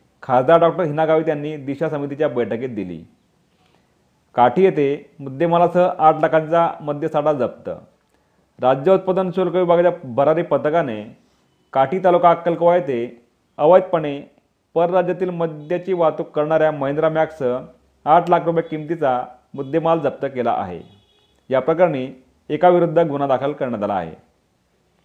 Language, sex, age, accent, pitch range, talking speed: Marathi, male, 40-59, native, 145-180 Hz, 115 wpm